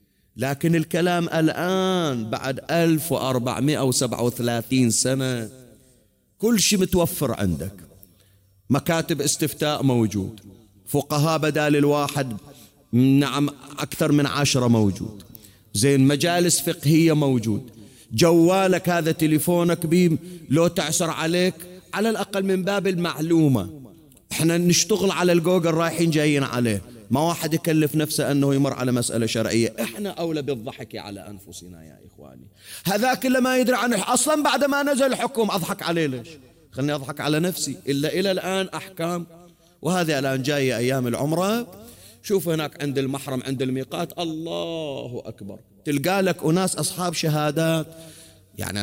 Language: Arabic